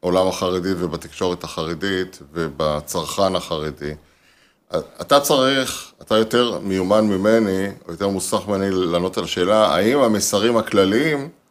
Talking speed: 115 wpm